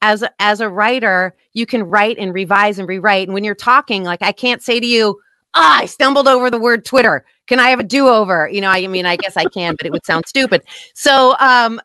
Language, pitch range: English, 190-250 Hz